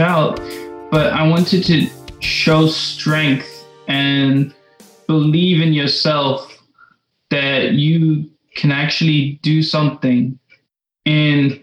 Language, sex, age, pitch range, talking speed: Greek, male, 20-39, 135-160 Hz, 95 wpm